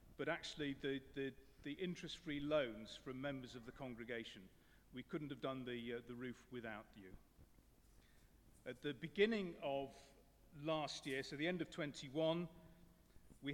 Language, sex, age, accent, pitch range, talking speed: English, male, 40-59, British, 130-155 Hz, 155 wpm